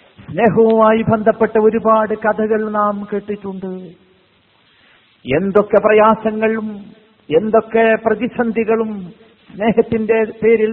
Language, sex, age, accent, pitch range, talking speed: Malayalam, male, 50-69, native, 220-245 Hz, 65 wpm